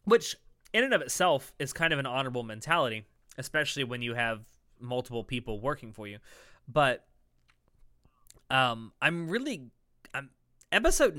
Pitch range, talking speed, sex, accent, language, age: 110-145 Hz, 140 wpm, male, American, English, 20-39